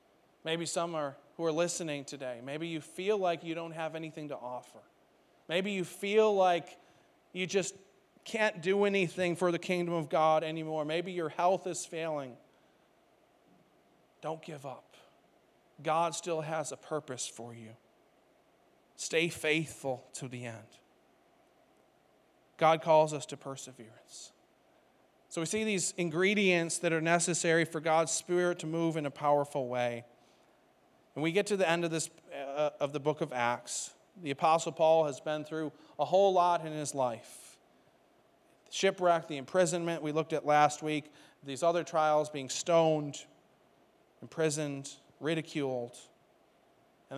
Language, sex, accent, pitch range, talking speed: English, male, American, 145-175 Hz, 150 wpm